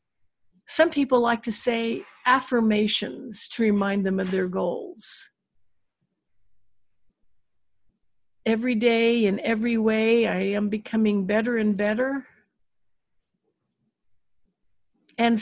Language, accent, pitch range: English, American, 205-265 Hz